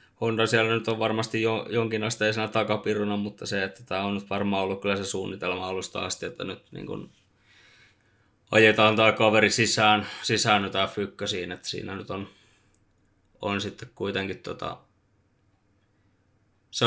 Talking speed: 140 wpm